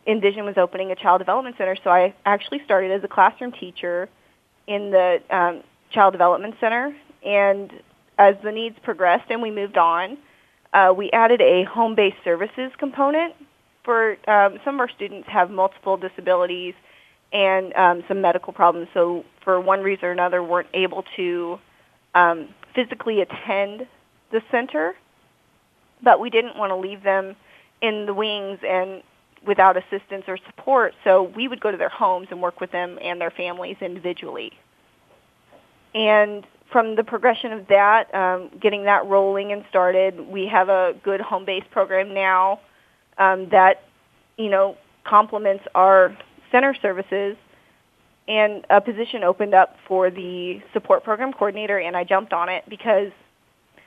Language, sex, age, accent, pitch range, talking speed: English, female, 30-49, American, 185-215 Hz, 155 wpm